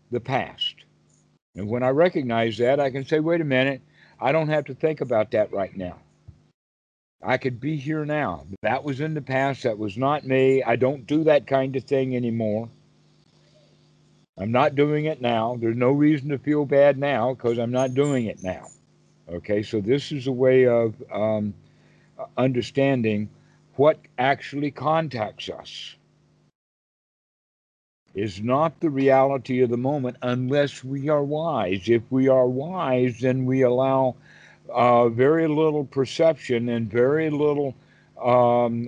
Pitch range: 120-145 Hz